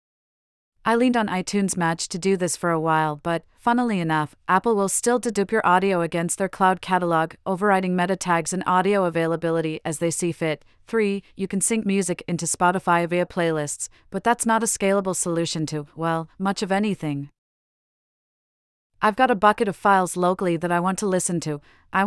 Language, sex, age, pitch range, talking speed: English, female, 40-59, 165-200 Hz, 185 wpm